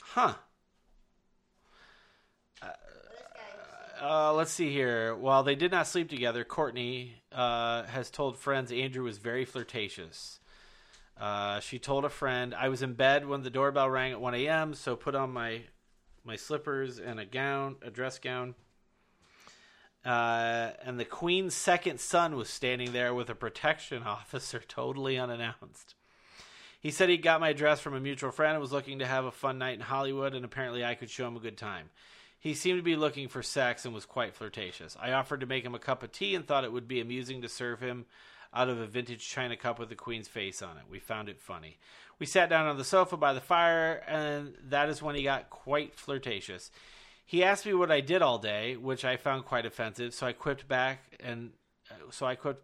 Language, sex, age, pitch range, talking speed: English, male, 30-49, 120-145 Hz, 200 wpm